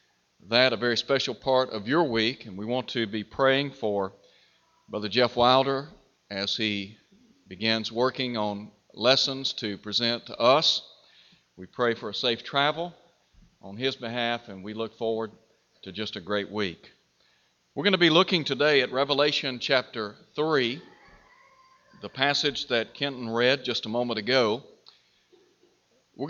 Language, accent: English, American